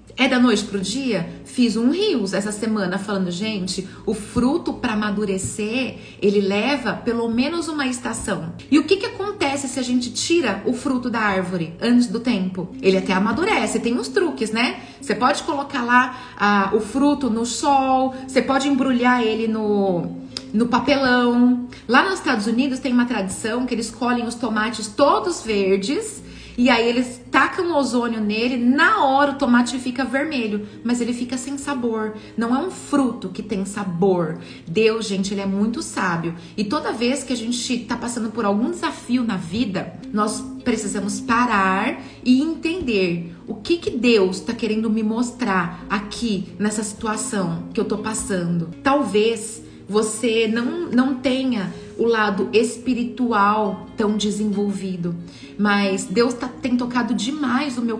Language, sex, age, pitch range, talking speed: Portuguese, female, 30-49, 210-255 Hz, 160 wpm